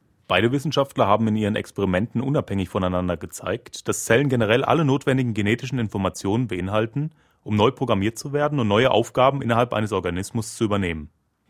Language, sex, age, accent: German, male, 30-49, German